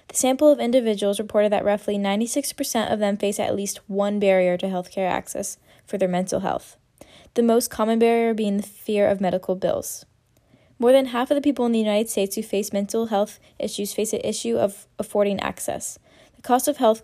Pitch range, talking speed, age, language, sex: 200-235 Hz, 205 wpm, 10-29, English, female